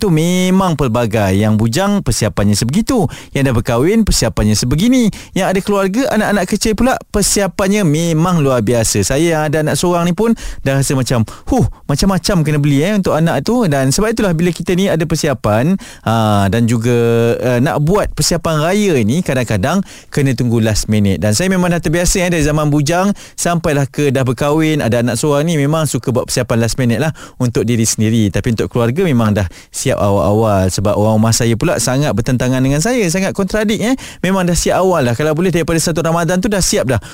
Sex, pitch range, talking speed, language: male, 115-175 Hz, 195 wpm, Malay